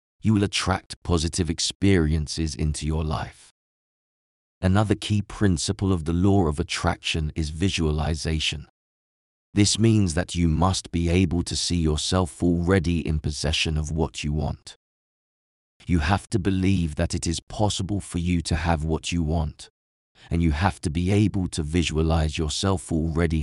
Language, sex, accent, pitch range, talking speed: English, male, British, 75-95 Hz, 155 wpm